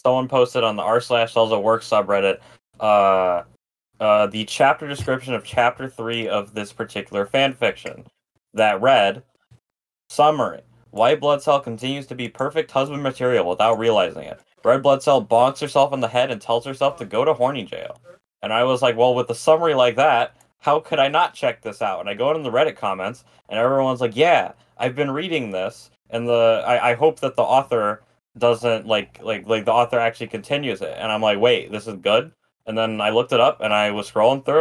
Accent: American